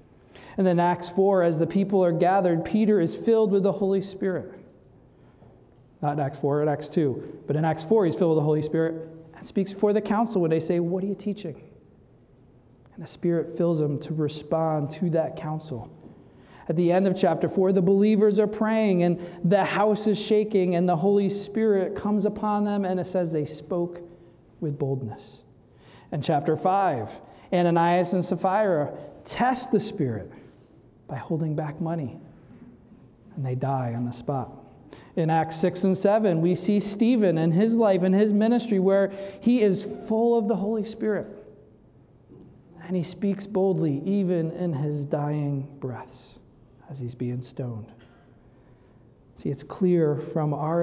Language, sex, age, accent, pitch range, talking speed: English, male, 40-59, American, 150-195 Hz, 170 wpm